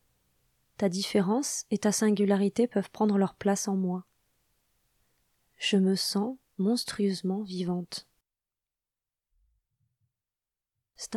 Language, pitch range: French, 190-220 Hz